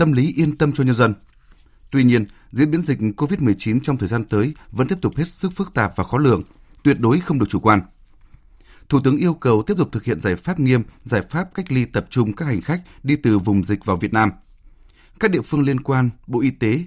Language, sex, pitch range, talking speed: Vietnamese, male, 105-145 Hz, 240 wpm